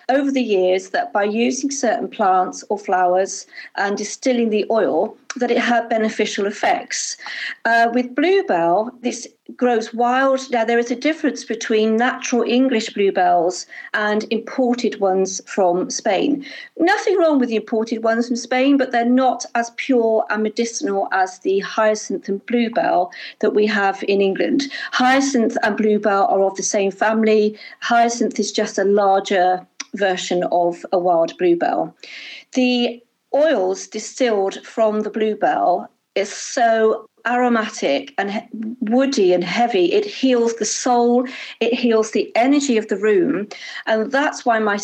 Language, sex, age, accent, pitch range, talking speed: English, female, 50-69, British, 210-255 Hz, 145 wpm